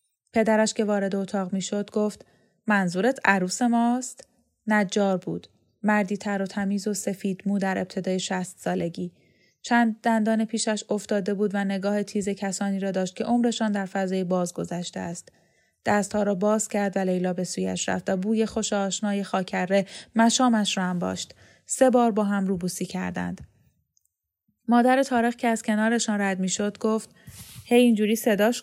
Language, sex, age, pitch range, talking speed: Persian, female, 10-29, 185-225 Hz, 155 wpm